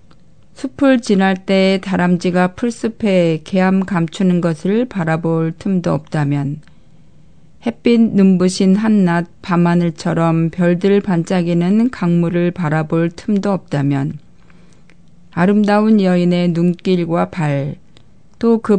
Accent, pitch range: native, 165-200 Hz